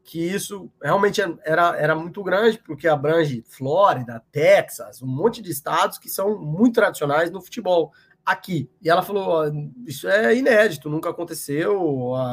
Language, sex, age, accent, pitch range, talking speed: Portuguese, male, 20-39, Brazilian, 140-185 Hz, 150 wpm